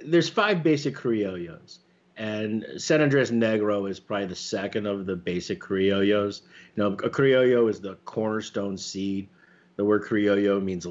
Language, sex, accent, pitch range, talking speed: English, male, American, 95-125 Hz, 155 wpm